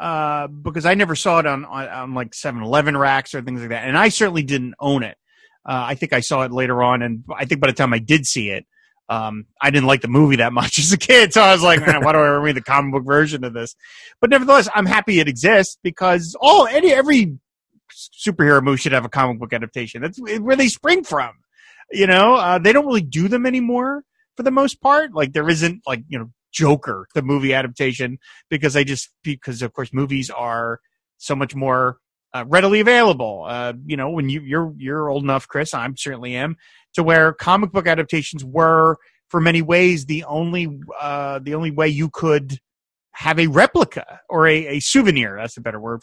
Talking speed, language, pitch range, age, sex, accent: 215 wpm, English, 135-185 Hz, 30-49, male, American